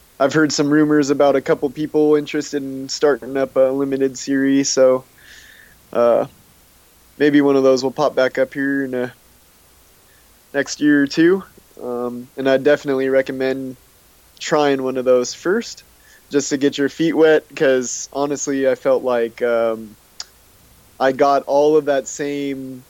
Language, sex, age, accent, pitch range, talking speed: English, male, 20-39, American, 125-155 Hz, 155 wpm